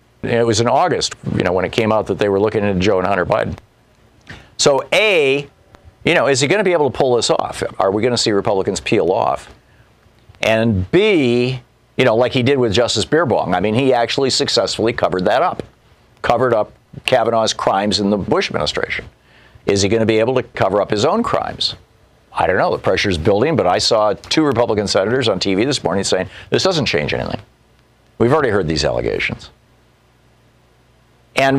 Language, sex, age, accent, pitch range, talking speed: English, male, 50-69, American, 100-130 Hz, 200 wpm